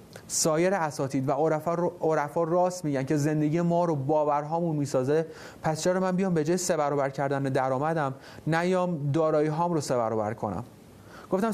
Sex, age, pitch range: male, 30-49, 135-180 Hz